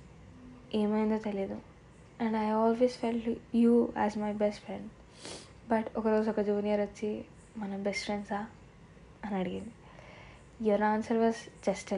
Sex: female